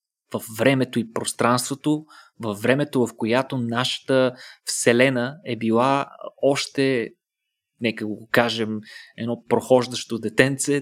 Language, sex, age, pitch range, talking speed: Bulgarian, male, 20-39, 115-135 Hz, 105 wpm